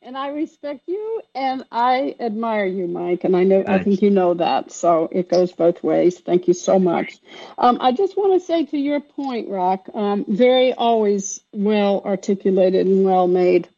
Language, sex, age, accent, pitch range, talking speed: English, female, 60-79, American, 180-230 Hz, 190 wpm